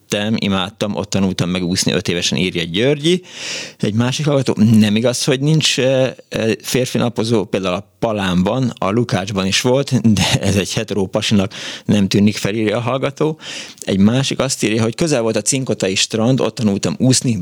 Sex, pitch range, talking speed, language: male, 95-125 Hz, 160 wpm, Hungarian